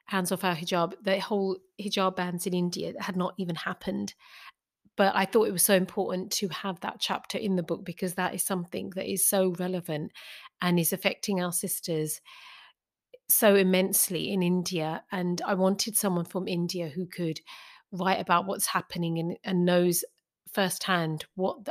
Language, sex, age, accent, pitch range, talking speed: English, female, 30-49, British, 180-200 Hz, 170 wpm